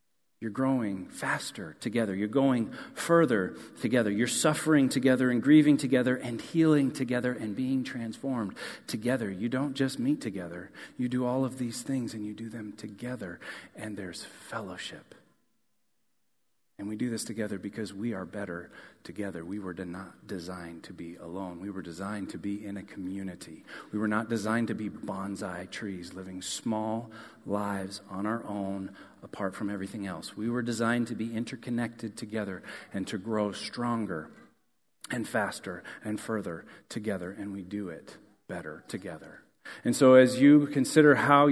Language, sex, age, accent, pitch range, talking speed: English, male, 40-59, American, 105-130 Hz, 160 wpm